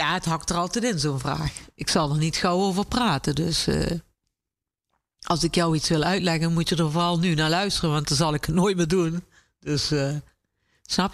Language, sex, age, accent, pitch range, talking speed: English, female, 50-69, Dutch, 155-200 Hz, 225 wpm